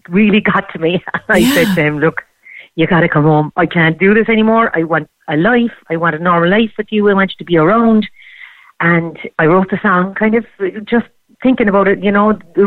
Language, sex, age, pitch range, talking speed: English, female, 40-59, 170-220 Hz, 230 wpm